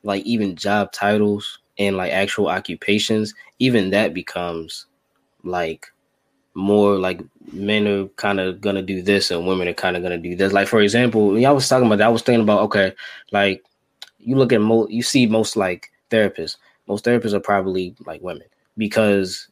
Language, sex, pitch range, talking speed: English, male, 95-110 Hz, 190 wpm